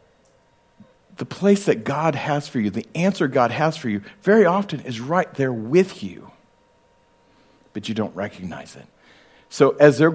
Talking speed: 165 wpm